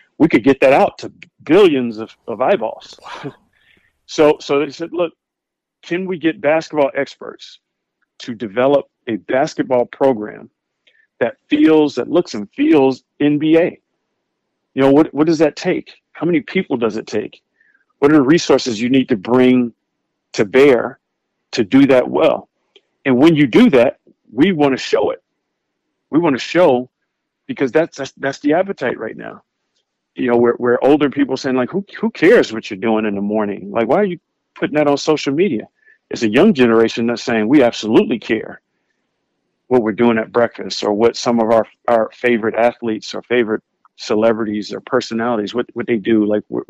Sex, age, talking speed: male, 50-69, 180 wpm